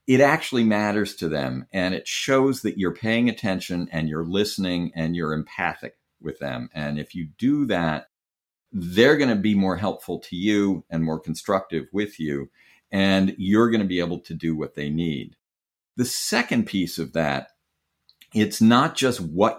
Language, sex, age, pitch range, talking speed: English, male, 50-69, 80-110 Hz, 180 wpm